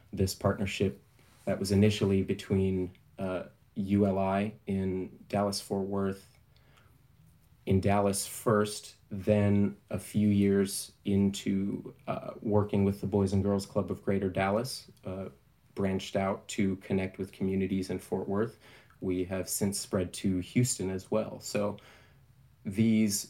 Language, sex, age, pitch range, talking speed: English, male, 30-49, 95-110 Hz, 130 wpm